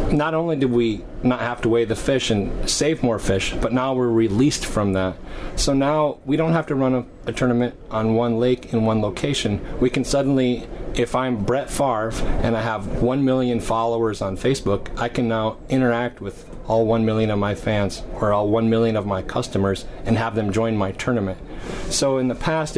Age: 30-49